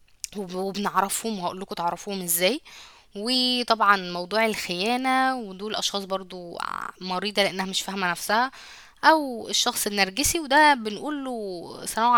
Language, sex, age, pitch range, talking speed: Arabic, female, 10-29, 190-245 Hz, 110 wpm